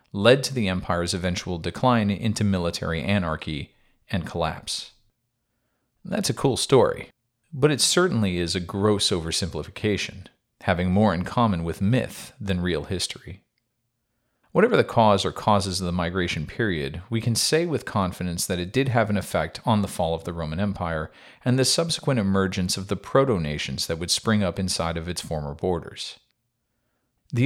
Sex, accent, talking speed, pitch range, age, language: male, American, 165 wpm, 85-120 Hz, 40-59, English